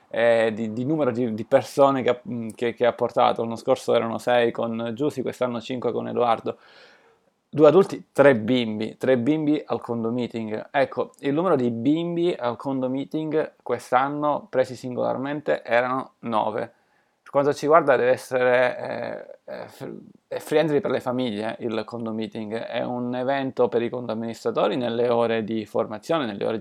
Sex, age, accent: male, 20-39, native